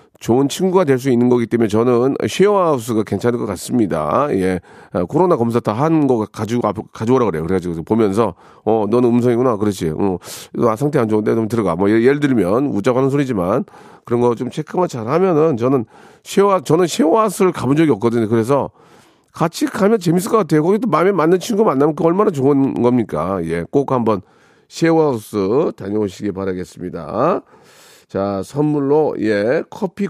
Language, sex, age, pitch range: Korean, male, 40-59, 105-155 Hz